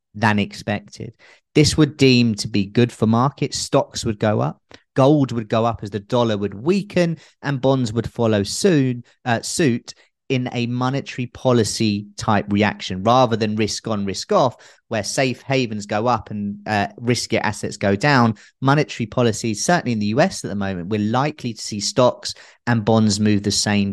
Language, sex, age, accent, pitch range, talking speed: English, male, 30-49, British, 105-135 Hz, 180 wpm